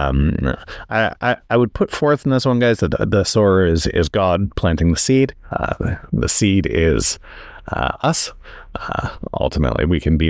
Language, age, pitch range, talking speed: English, 30-49, 85-120 Hz, 185 wpm